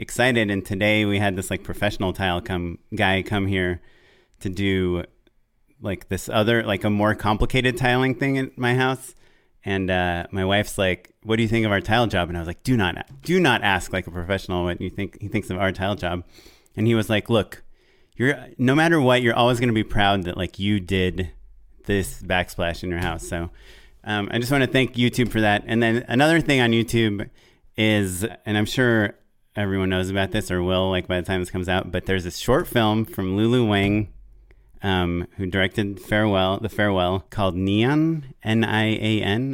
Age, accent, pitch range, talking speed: 30-49, American, 95-115 Hz, 205 wpm